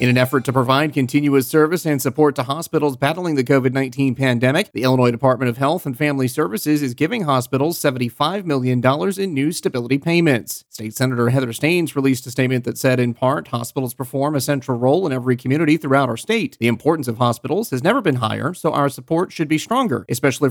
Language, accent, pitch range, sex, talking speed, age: English, American, 130-155 Hz, male, 200 wpm, 30-49